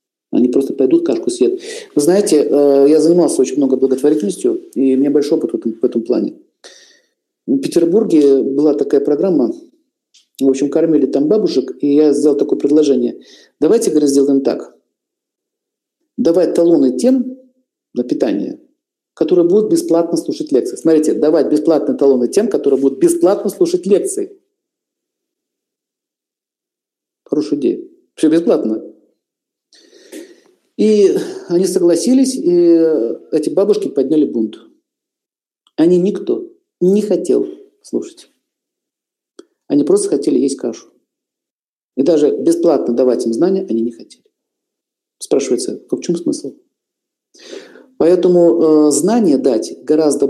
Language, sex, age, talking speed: Russian, male, 50-69, 120 wpm